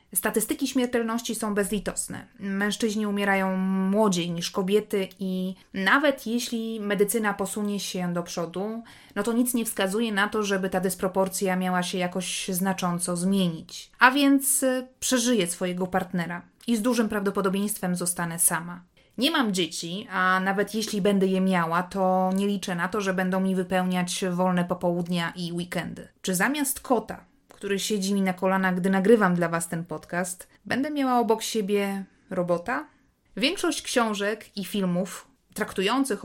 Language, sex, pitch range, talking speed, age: Polish, female, 185-225 Hz, 145 wpm, 20-39